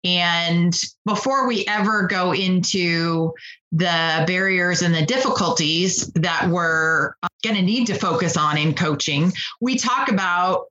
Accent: American